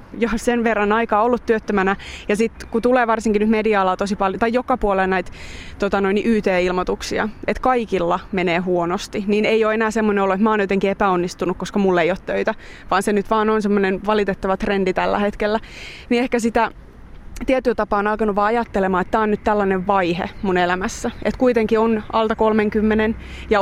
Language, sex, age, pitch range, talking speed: Finnish, female, 30-49, 195-225 Hz, 190 wpm